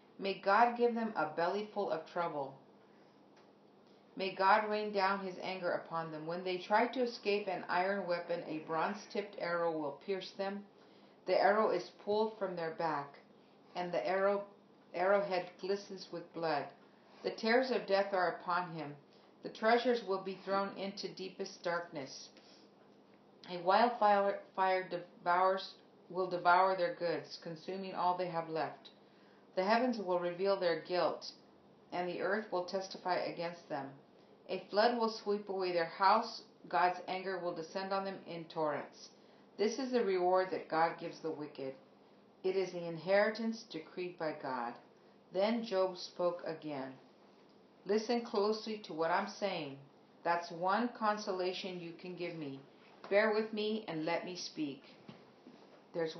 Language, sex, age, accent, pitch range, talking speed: English, female, 50-69, American, 170-200 Hz, 150 wpm